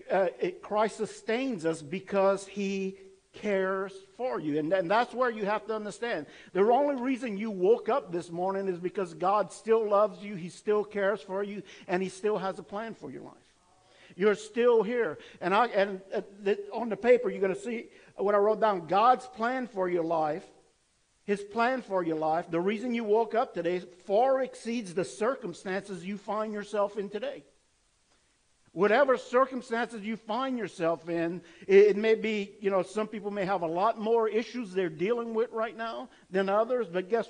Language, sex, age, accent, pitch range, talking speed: English, male, 50-69, American, 185-225 Hz, 185 wpm